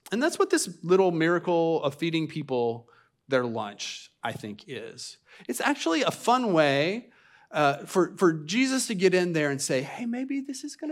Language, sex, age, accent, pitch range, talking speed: English, male, 30-49, American, 140-240 Hz, 185 wpm